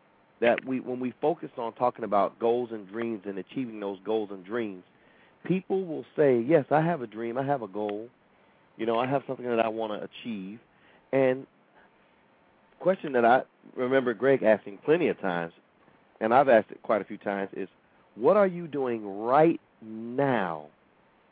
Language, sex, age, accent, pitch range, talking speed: English, male, 40-59, American, 105-130 Hz, 185 wpm